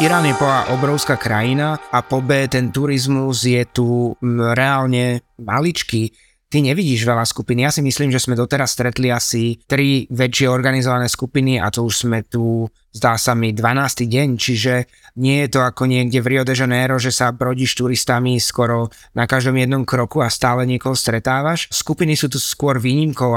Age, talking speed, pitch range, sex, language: 20-39, 180 wpm, 120-130 Hz, male, Slovak